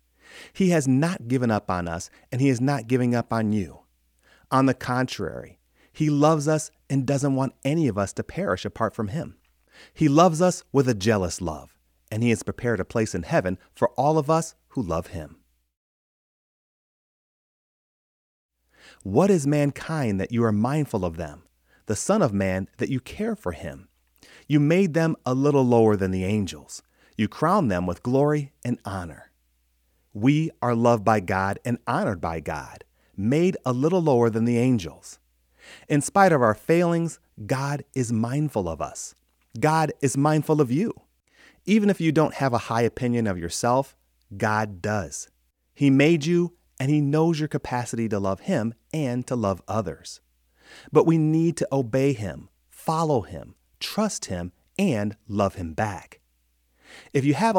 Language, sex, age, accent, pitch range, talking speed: English, male, 30-49, American, 90-145 Hz, 170 wpm